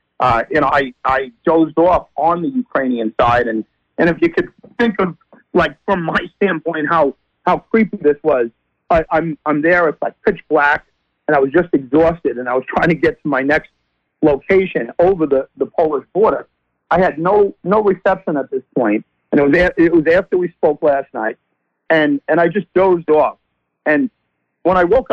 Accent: American